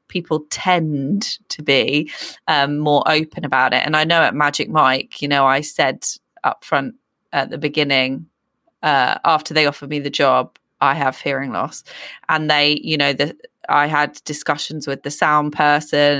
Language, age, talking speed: English, 30-49, 175 wpm